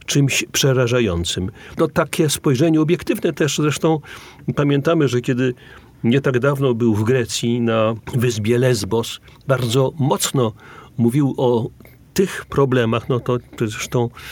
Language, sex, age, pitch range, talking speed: Polish, male, 40-59, 120-140 Hz, 120 wpm